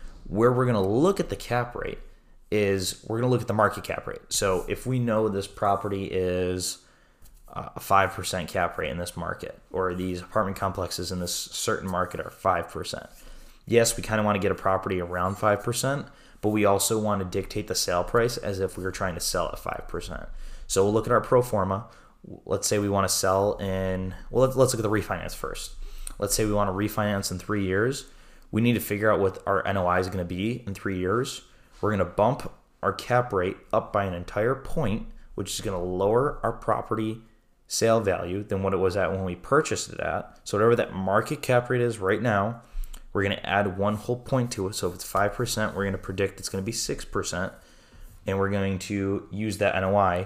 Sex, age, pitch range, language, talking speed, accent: male, 20-39, 95-110 Hz, English, 220 wpm, American